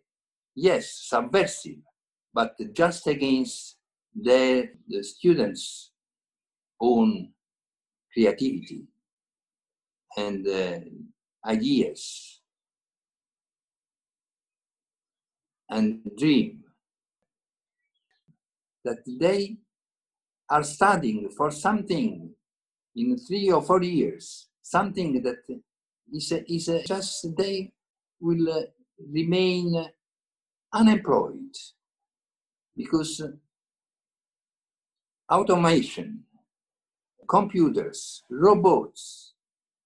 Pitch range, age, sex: 155-220 Hz, 50-69, male